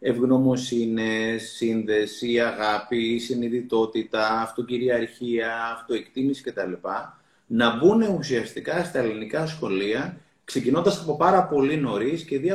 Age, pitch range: 30-49, 115-150 Hz